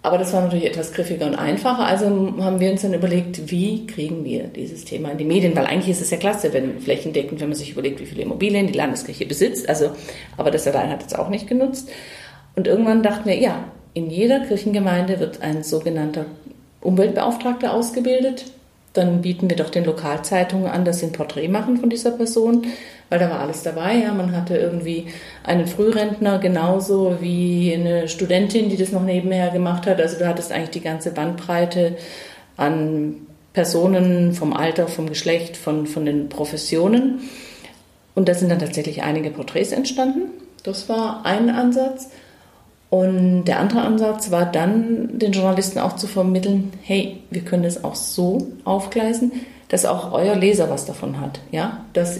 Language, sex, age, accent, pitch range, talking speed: German, female, 40-59, German, 165-210 Hz, 175 wpm